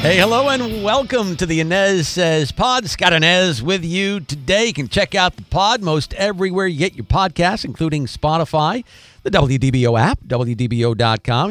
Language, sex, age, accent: English, male, 50-69, American